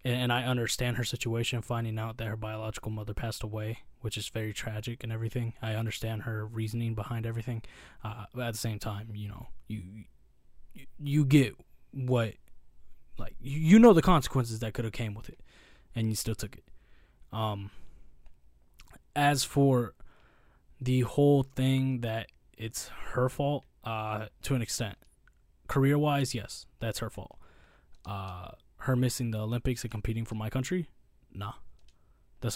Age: 20-39